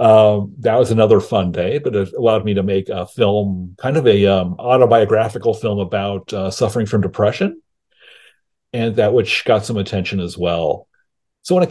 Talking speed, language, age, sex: 185 wpm, English, 40-59, male